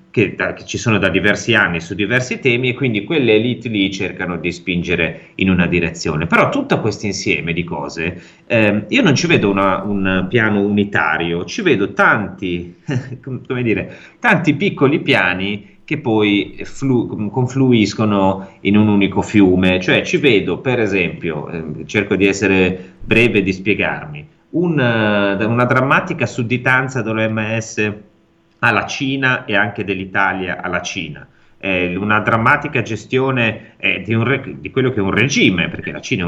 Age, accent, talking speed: 30-49, native, 160 wpm